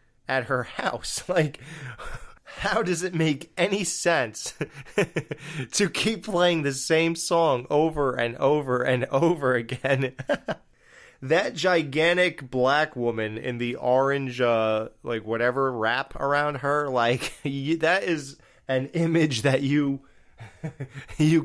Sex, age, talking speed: male, 20-39, 125 wpm